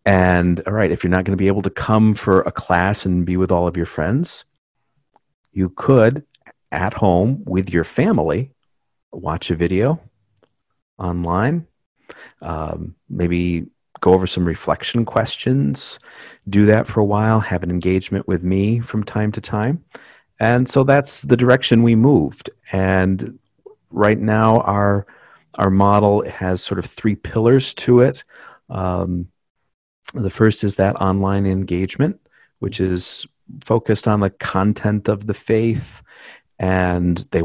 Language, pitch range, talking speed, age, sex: English, 90-115 Hz, 145 wpm, 40-59, male